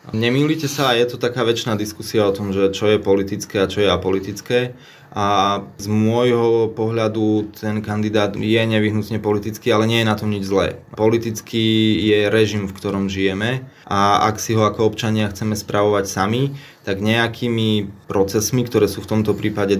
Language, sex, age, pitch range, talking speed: Slovak, male, 20-39, 95-110 Hz, 170 wpm